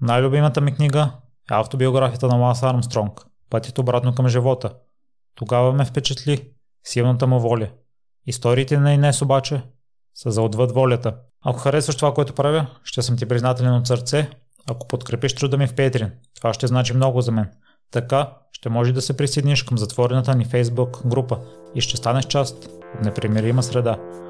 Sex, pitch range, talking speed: male, 115-130 Hz, 165 wpm